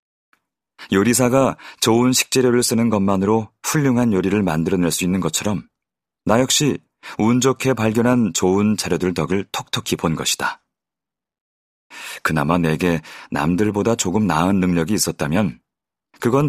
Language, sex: Korean, male